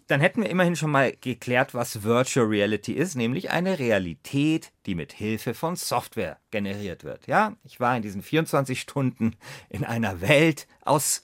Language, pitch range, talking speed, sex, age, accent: German, 105-135 Hz, 170 wpm, male, 40-59, German